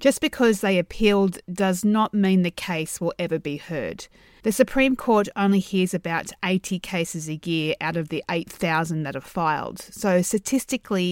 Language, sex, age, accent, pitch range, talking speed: English, female, 30-49, Australian, 175-215 Hz, 175 wpm